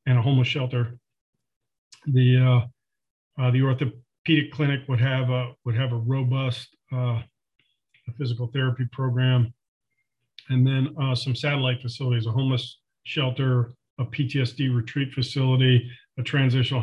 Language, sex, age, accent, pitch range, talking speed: English, male, 40-59, American, 120-130 Hz, 130 wpm